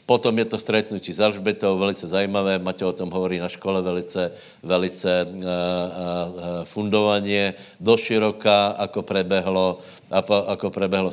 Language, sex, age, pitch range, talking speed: Slovak, male, 60-79, 95-110 Hz, 115 wpm